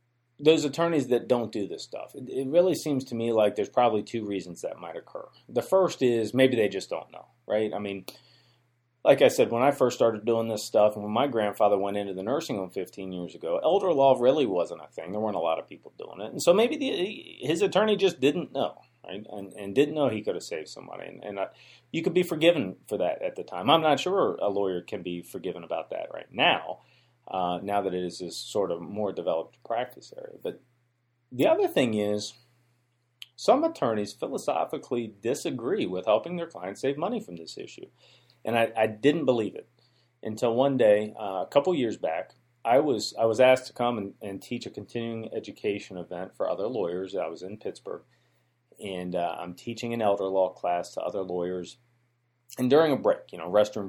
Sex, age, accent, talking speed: male, 30-49, American, 215 wpm